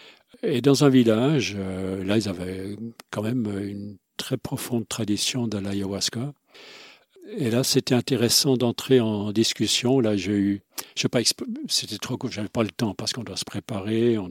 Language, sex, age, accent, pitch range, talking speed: French, male, 50-69, French, 105-125 Hz, 180 wpm